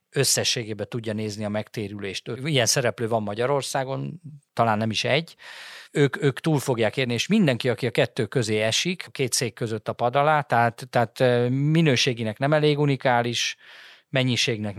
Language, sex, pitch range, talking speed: Hungarian, male, 115-135 Hz, 160 wpm